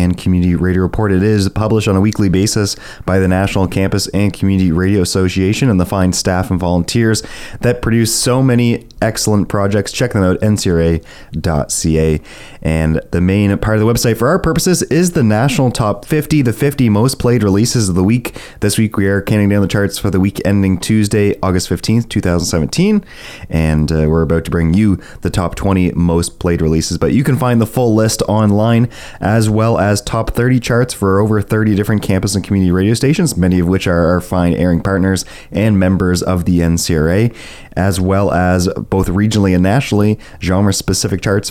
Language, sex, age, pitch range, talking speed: English, male, 30-49, 90-110 Hz, 190 wpm